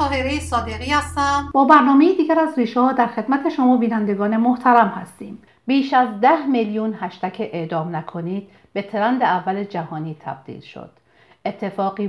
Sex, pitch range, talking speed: female, 180-230 Hz, 125 wpm